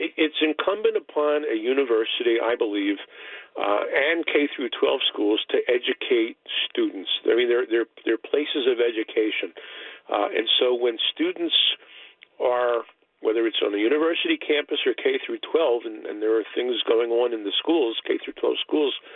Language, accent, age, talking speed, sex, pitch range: English, American, 50-69, 165 wpm, male, 310-435 Hz